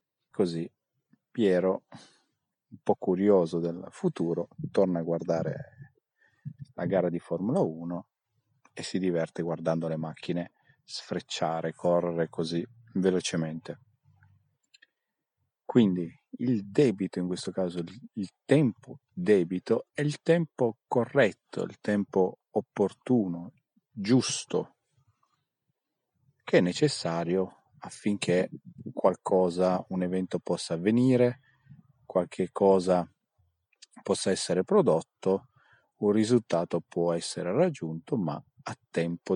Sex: male